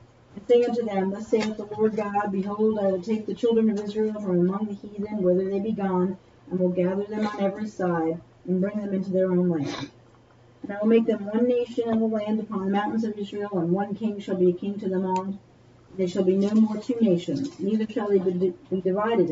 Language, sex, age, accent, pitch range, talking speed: English, female, 50-69, American, 175-210 Hz, 235 wpm